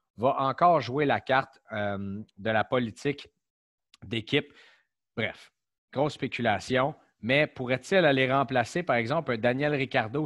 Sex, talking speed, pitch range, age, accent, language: male, 130 wpm, 120-150 Hz, 30-49, Canadian, French